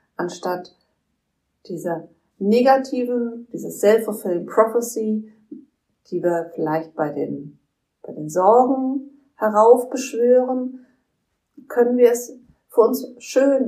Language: German